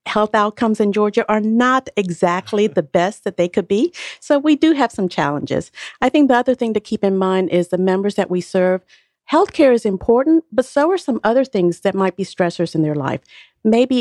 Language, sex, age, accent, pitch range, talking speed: English, female, 50-69, American, 180-225 Hz, 220 wpm